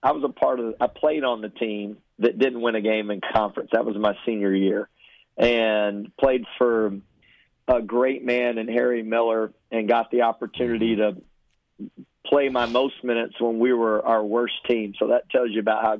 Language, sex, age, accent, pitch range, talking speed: English, male, 40-59, American, 110-125 Hz, 195 wpm